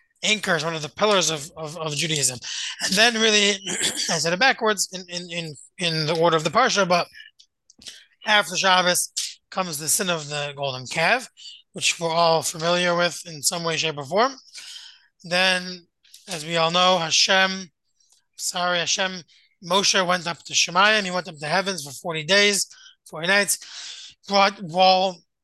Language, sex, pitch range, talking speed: English, male, 160-200 Hz, 170 wpm